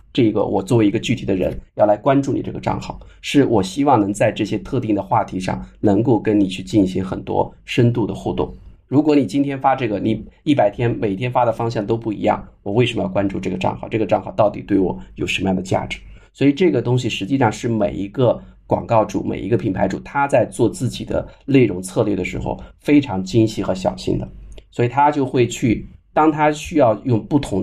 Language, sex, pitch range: Chinese, male, 100-125 Hz